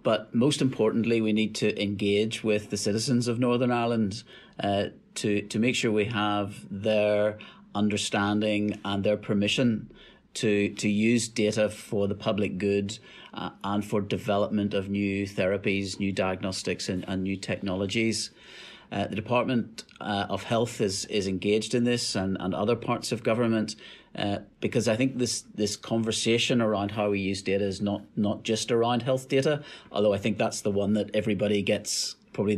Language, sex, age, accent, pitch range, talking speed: English, male, 40-59, British, 100-115 Hz, 170 wpm